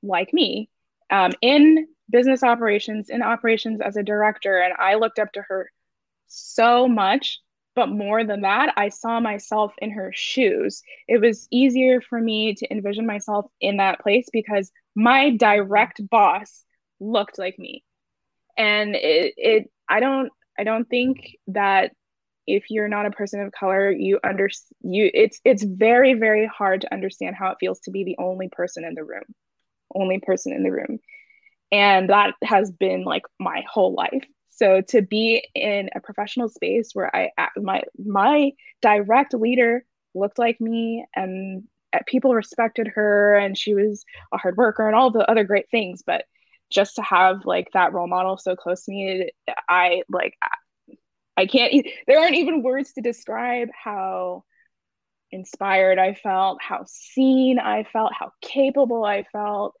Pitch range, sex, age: 200-255 Hz, female, 10-29